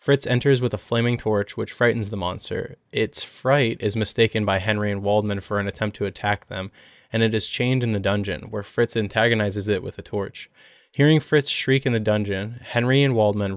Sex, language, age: male, English, 20-39